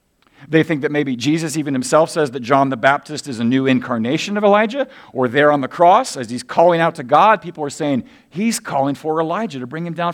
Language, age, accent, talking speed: English, 50-69, American, 235 wpm